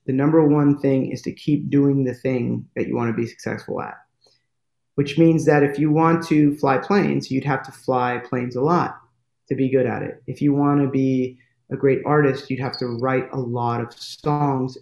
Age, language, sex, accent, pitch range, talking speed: 30-49, English, male, American, 135-165 Hz, 220 wpm